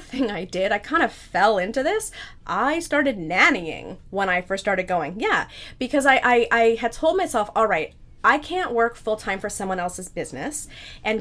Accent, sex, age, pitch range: American, female, 20-39, 190-255 Hz